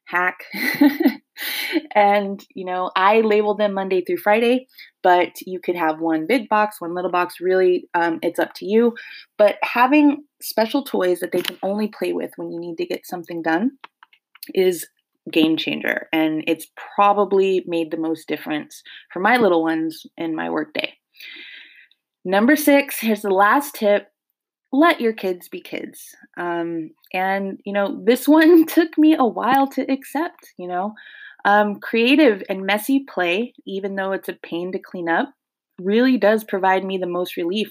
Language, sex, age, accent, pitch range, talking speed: English, female, 20-39, American, 170-240 Hz, 165 wpm